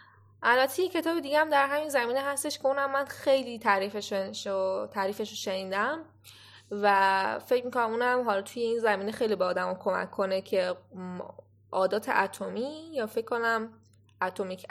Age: 10-29